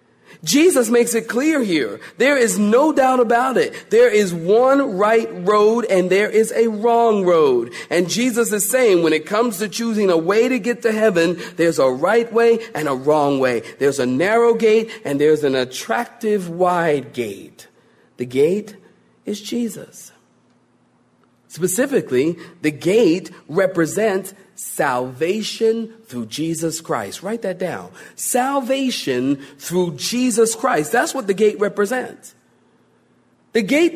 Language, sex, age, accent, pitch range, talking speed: English, male, 40-59, American, 155-240 Hz, 145 wpm